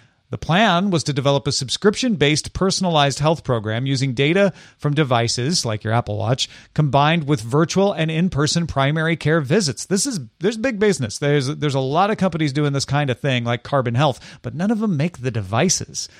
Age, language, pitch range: 40-59, English, 135-185 Hz